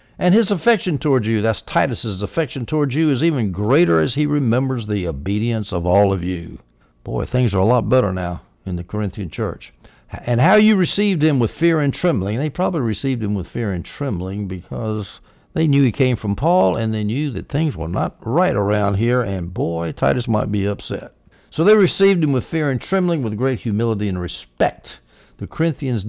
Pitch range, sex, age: 95-130 Hz, male, 60-79